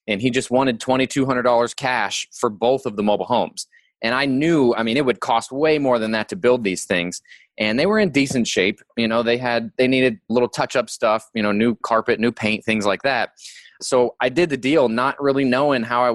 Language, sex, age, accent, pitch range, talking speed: English, male, 20-39, American, 115-135 Hz, 230 wpm